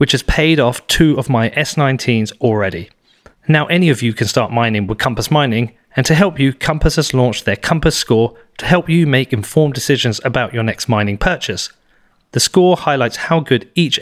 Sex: male